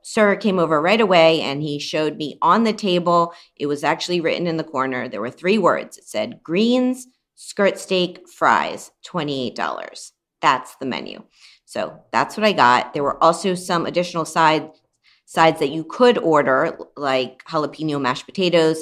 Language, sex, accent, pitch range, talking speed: English, female, American, 130-175 Hz, 165 wpm